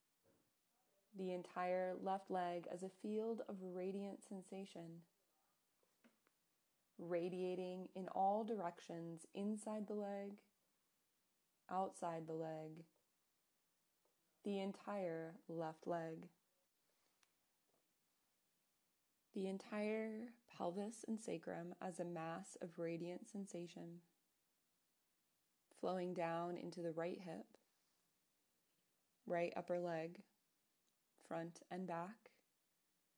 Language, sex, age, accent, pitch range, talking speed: English, female, 20-39, American, 170-205 Hz, 85 wpm